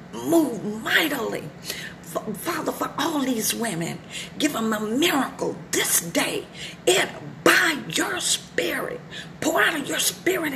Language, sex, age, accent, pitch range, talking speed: English, female, 40-59, American, 195-295 Hz, 125 wpm